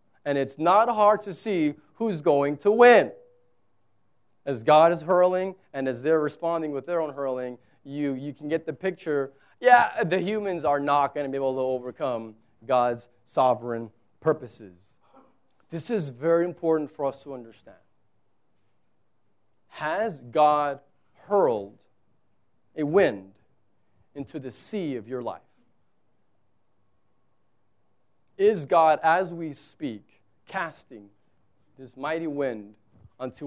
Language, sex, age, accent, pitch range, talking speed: English, male, 40-59, American, 120-160 Hz, 125 wpm